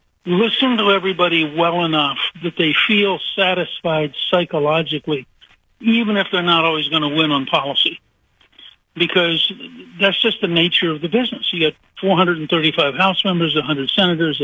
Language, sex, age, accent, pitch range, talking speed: English, male, 60-79, American, 155-185 Hz, 145 wpm